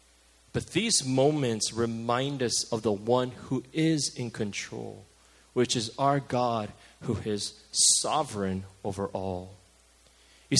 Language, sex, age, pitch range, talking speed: English, male, 30-49, 95-140 Hz, 125 wpm